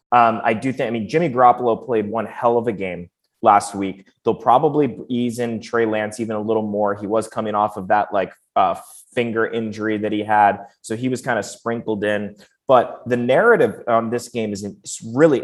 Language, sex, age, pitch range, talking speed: English, male, 20-39, 110-130 Hz, 215 wpm